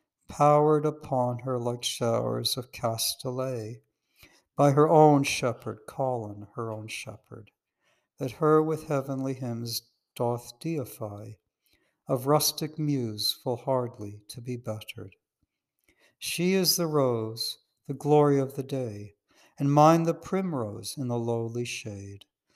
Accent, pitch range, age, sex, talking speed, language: American, 115-145 Hz, 60-79, male, 125 wpm, English